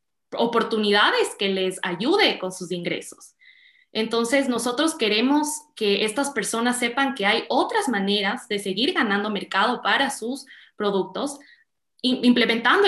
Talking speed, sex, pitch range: 120 wpm, female, 200-290 Hz